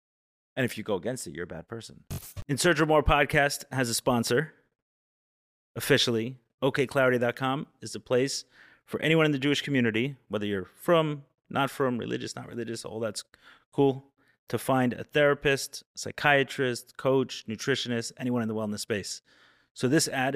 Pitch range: 110-135 Hz